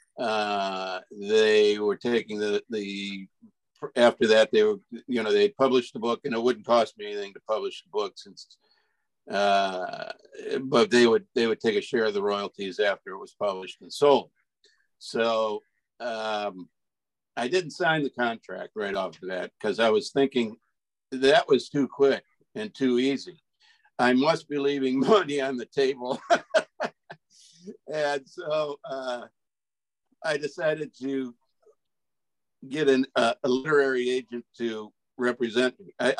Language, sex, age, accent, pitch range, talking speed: English, male, 60-79, American, 110-155 Hz, 150 wpm